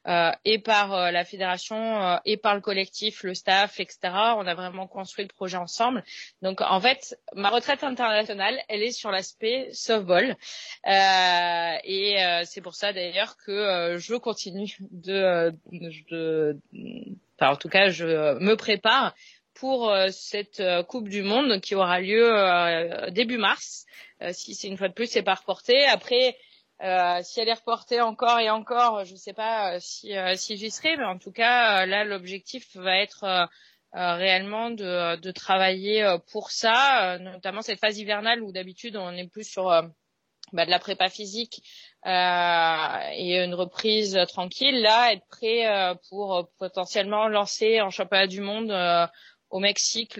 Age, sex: 30-49, female